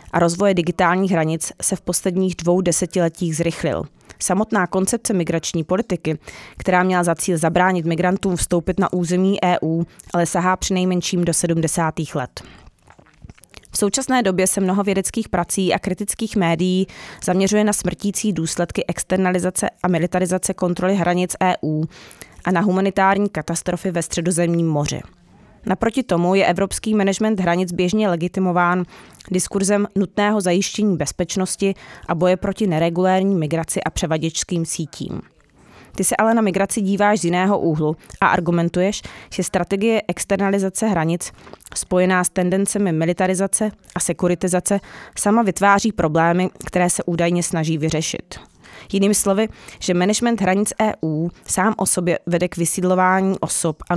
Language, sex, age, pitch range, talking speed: English, female, 20-39, 170-195 Hz, 135 wpm